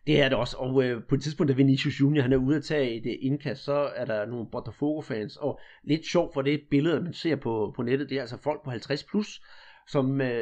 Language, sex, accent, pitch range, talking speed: Danish, male, native, 130-155 Hz, 235 wpm